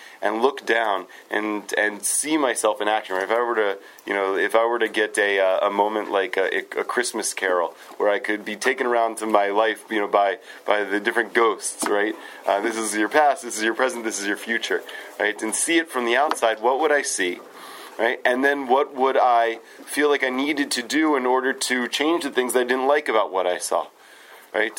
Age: 30-49